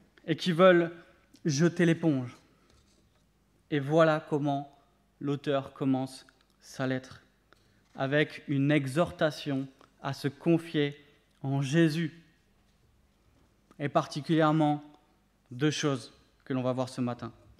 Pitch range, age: 135-175 Hz, 20-39